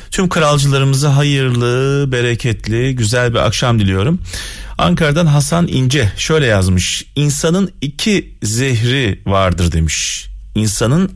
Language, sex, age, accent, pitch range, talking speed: Turkish, male, 40-59, native, 100-140 Hz, 100 wpm